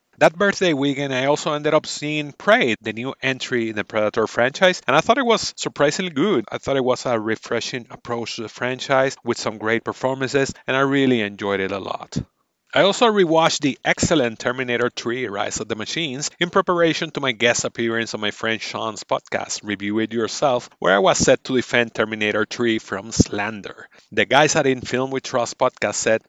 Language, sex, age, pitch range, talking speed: English, male, 30-49, 110-140 Hz, 200 wpm